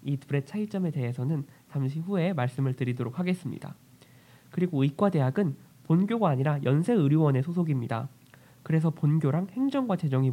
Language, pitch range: Korean, 135-180 Hz